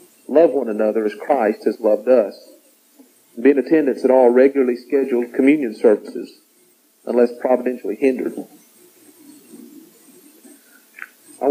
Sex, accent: male, American